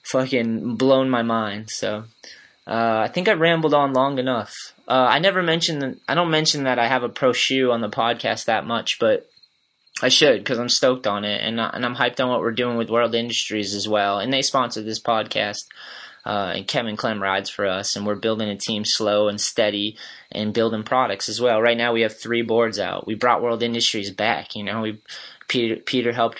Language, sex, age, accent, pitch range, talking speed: English, male, 20-39, American, 110-125 Hz, 220 wpm